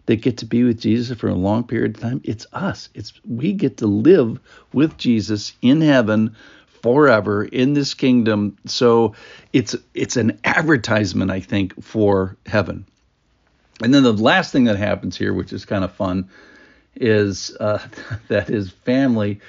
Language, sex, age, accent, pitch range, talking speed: English, male, 50-69, American, 95-120 Hz, 165 wpm